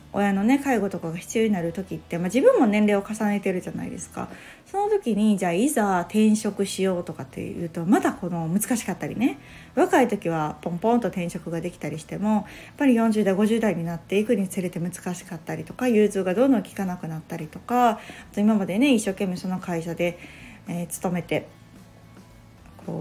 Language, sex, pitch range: Japanese, female, 175-240 Hz